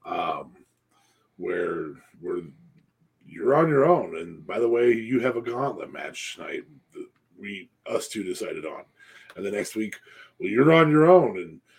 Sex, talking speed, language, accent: male, 165 wpm, English, American